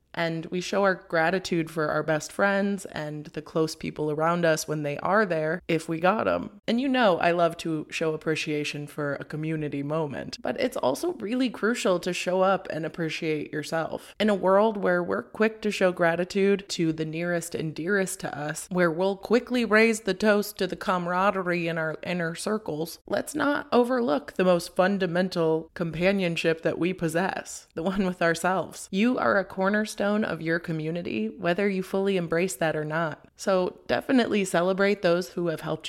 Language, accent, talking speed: English, American, 185 wpm